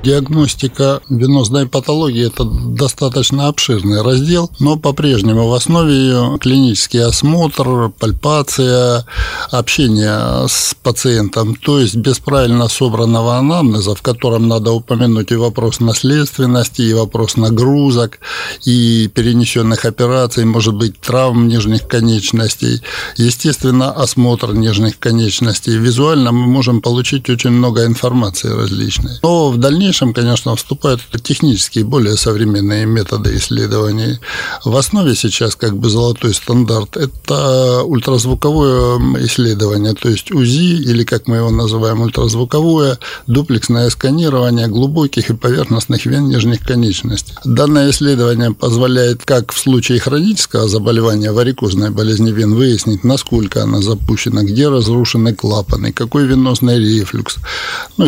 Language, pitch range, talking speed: Russian, 115-130 Hz, 120 wpm